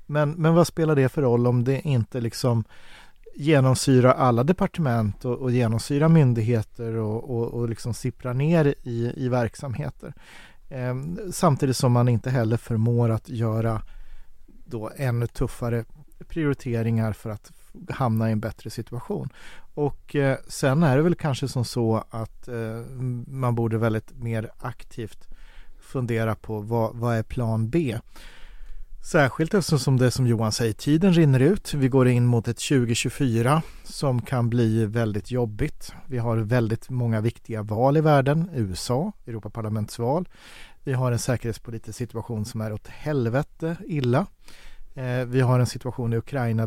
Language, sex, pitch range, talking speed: Swedish, male, 115-135 Hz, 150 wpm